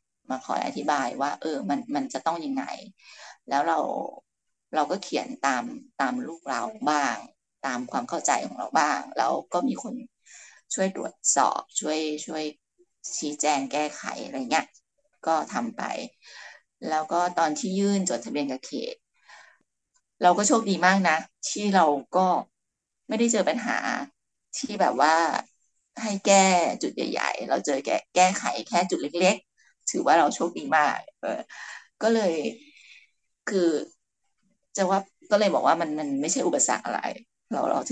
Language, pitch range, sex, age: Thai, 175-250 Hz, female, 20-39